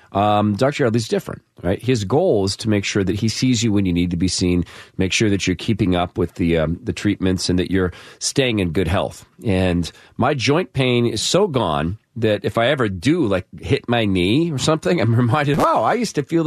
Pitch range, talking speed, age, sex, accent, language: 95-125 Hz, 235 wpm, 40-59, male, American, English